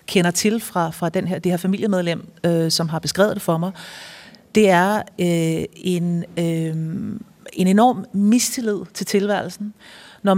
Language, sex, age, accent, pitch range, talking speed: Danish, female, 40-59, native, 175-205 Hz, 155 wpm